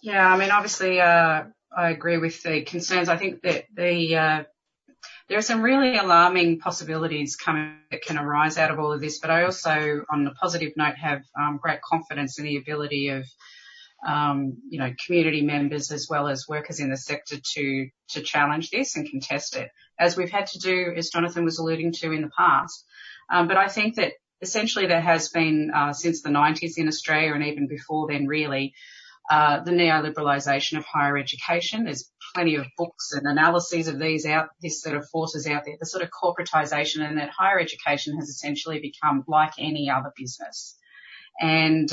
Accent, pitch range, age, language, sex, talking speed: Australian, 150-170 Hz, 30-49, English, female, 190 wpm